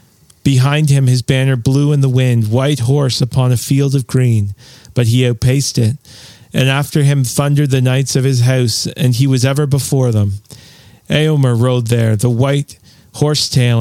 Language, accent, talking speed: English, American, 180 wpm